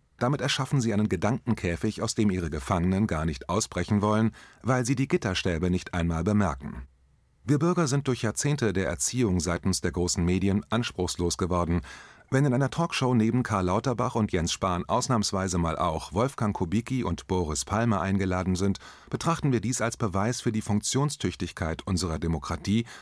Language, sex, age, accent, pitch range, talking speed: German, male, 30-49, German, 85-115 Hz, 165 wpm